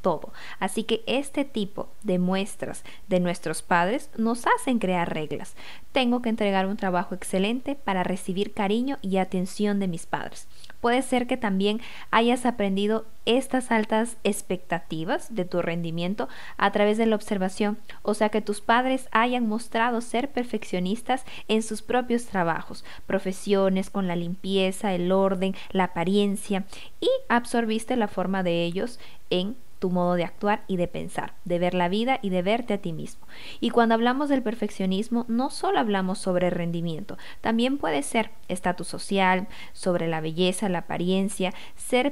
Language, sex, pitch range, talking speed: Spanish, female, 185-235 Hz, 160 wpm